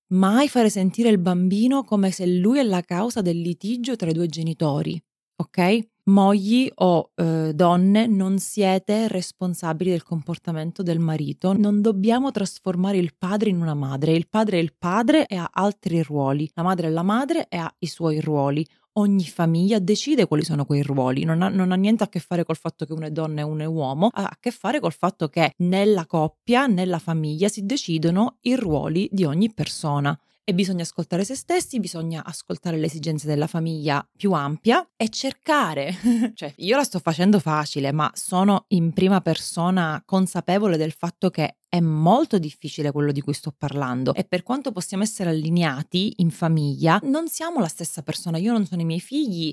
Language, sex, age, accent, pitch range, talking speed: Italian, female, 20-39, native, 160-210 Hz, 185 wpm